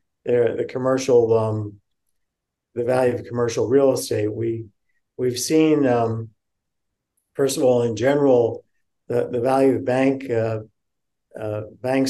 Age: 50-69